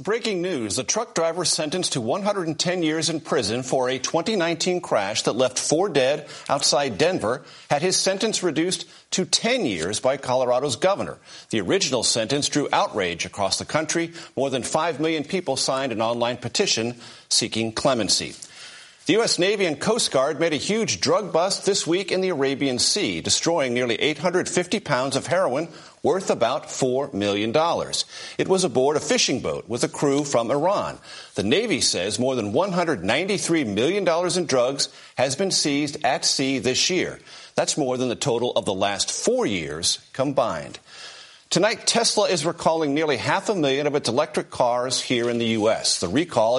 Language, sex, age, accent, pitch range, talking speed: English, male, 50-69, American, 125-180 Hz, 170 wpm